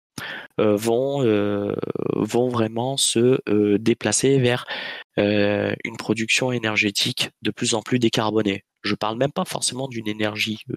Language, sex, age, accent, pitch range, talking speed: French, male, 20-39, French, 100-125 Hz, 145 wpm